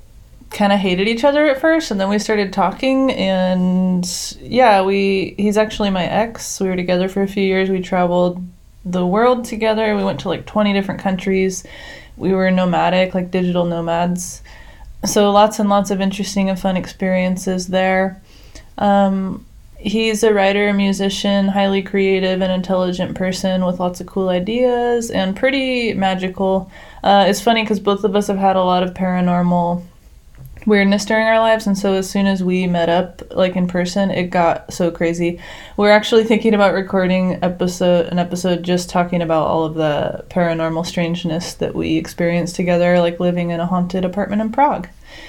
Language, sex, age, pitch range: English, female, 20-39, 180-210 Hz